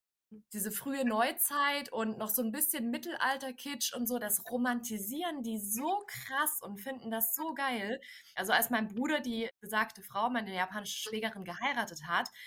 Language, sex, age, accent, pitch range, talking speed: German, female, 20-39, German, 205-250 Hz, 165 wpm